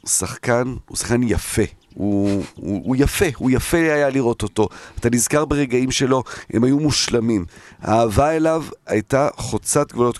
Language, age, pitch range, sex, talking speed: Hebrew, 40-59, 105-135 Hz, male, 155 wpm